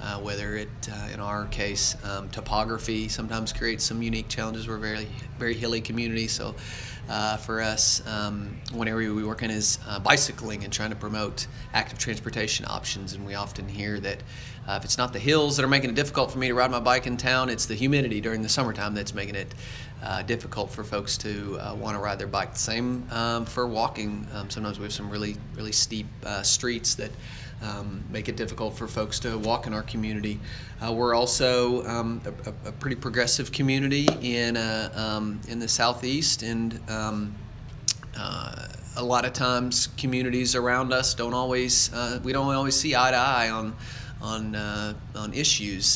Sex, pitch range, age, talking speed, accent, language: male, 105-125 Hz, 30-49, 190 wpm, American, English